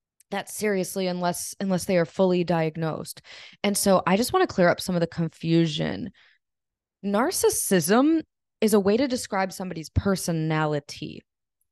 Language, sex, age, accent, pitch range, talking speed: English, female, 20-39, American, 165-200 Hz, 145 wpm